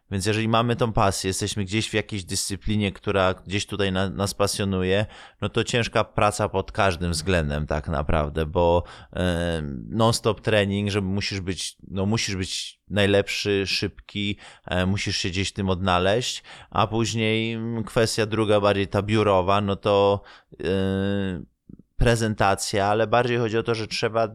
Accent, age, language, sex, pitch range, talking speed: native, 20-39, Polish, male, 90-105 Hz, 155 wpm